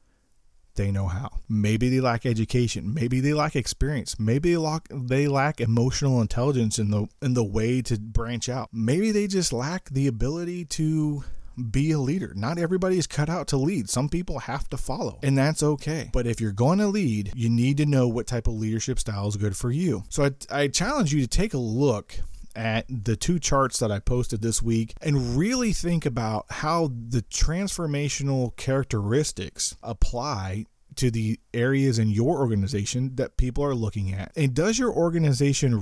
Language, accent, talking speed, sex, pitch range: English, American, 190 wpm, male, 110-140 Hz